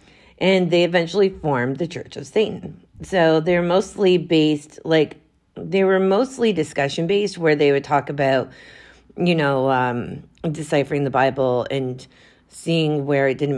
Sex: female